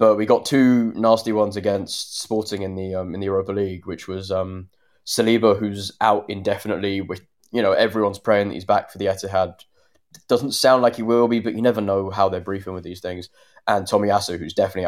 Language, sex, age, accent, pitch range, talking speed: English, male, 10-29, British, 95-115 Hz, 220 wpm